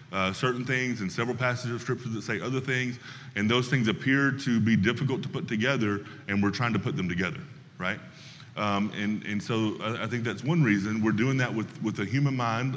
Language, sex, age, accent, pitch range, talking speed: English, male, 30-49, American, 105-135 Hz, 220 wpm